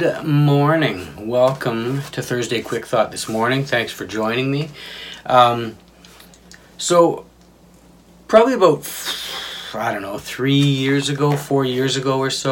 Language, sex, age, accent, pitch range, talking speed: English, male, 30-49, American, 120-155 Hz, 135 wpm